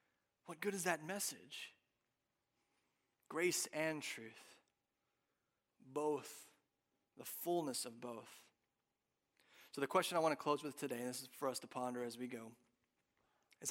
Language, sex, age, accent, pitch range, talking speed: English, male, 30-49, American, 130-160 Hz, 145 wpm